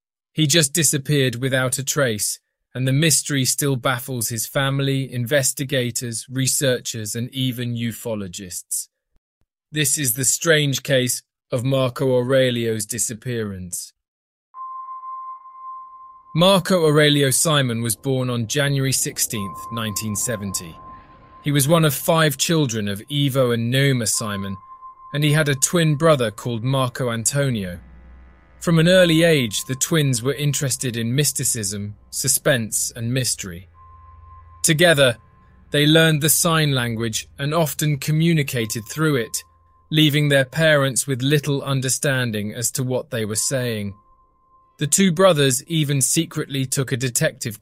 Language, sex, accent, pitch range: English, male, British, 115-150 Hz